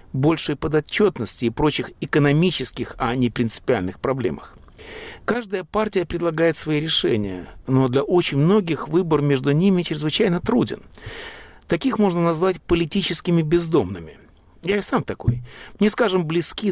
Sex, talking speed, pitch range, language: male, 125 wpm, 115-165 Hz, Russian